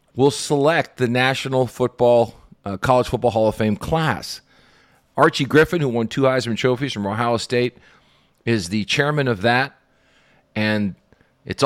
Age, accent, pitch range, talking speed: 40-59, American, 105-130 Hz, 150 wpm